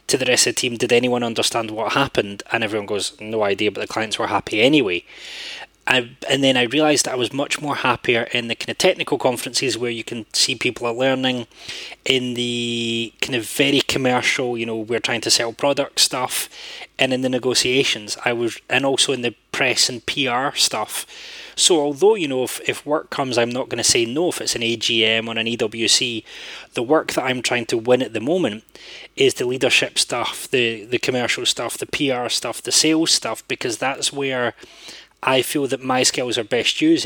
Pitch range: 120-140 Hz